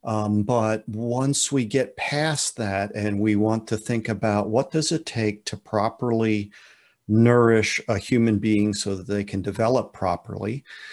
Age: 50-69